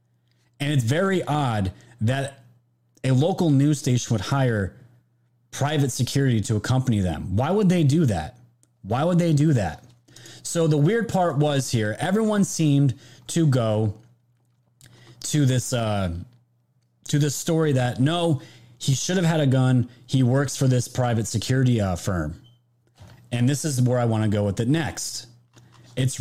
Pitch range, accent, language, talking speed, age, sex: 115-145 Hz, American, English, 160 wpm, 30-49, male